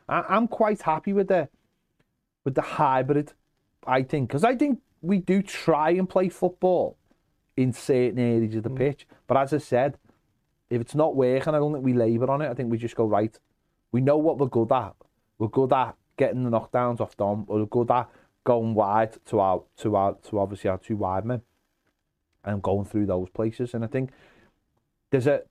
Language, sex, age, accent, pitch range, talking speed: English, male, 30-49, British, 115-165 Hz, 200 wpm